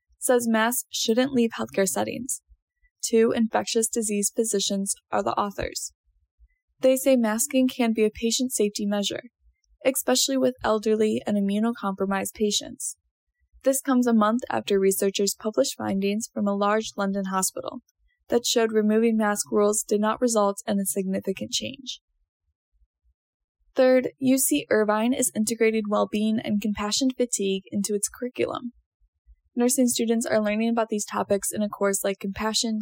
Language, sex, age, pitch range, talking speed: English, female, 10-29, 200-245 Hz, 145 wpm